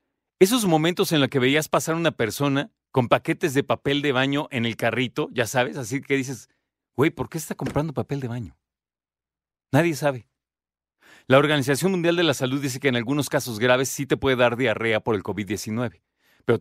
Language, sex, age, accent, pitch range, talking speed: Spanish, male, 40-59, Mexican, 130-180 Hz, 195 wpm